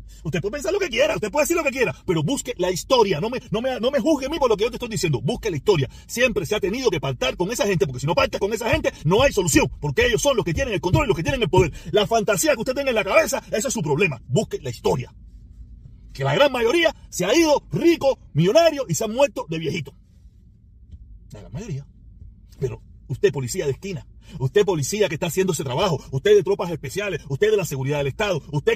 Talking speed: 260 wpm